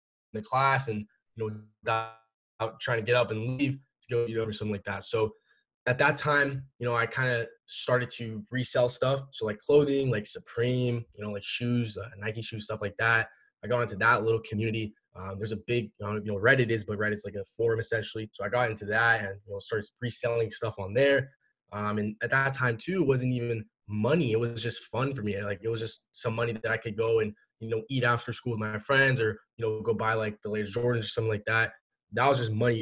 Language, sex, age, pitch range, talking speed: English, male, 10-29, 110-130 Hz, 245 wpm